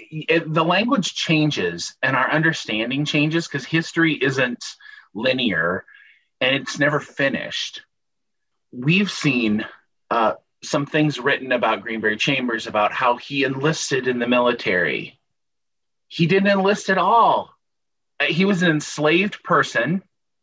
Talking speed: 125 wpm